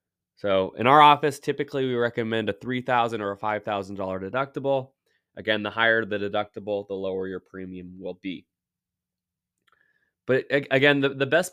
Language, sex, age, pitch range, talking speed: English, male, 20-39, 100-130 Hz, 150 wpm